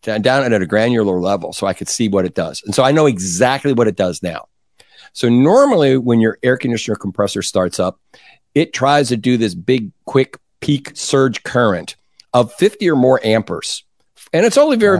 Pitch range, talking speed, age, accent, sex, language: 105-135 Hz, 195 wpm, 50-69, American, male, English